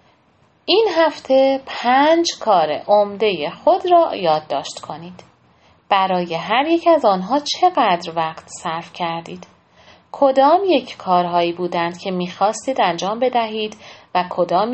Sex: female